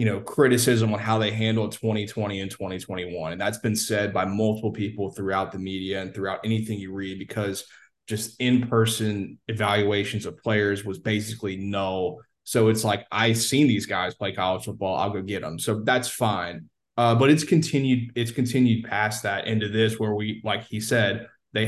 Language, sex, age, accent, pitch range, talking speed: English, male, 20-39, American, 105-120 Hz, 185 wpm